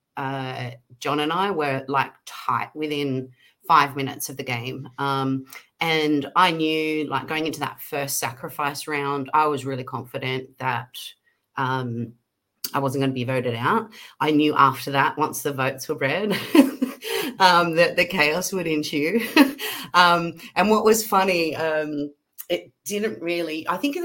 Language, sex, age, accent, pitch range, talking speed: English, female, 30-49, Australian, 140-190 Hz, 160 wpm